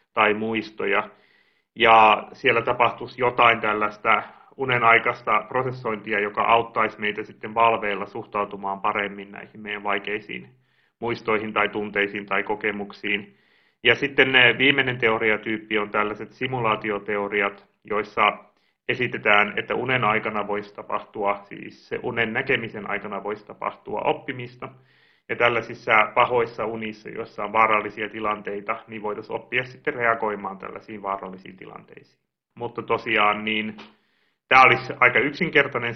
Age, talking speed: 30-49, 115 wpm